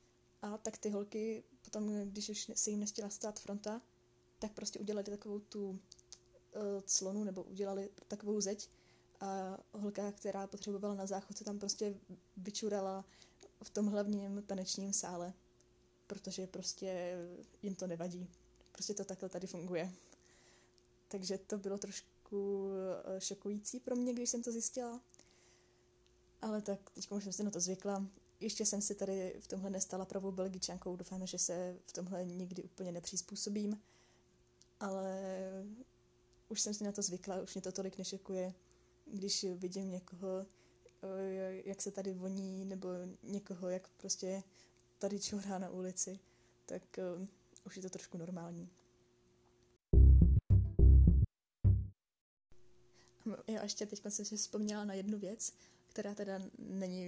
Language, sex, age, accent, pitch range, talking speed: Czech, female, 10-29, native, 180-205 Hz, 135 wpm